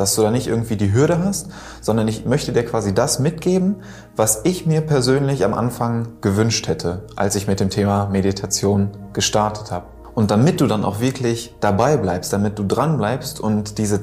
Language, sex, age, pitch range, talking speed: German, male, 20-39, 100-125 Hz, 195 wpm